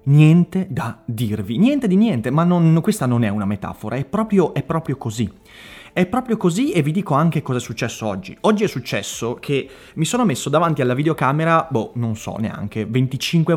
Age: 30-49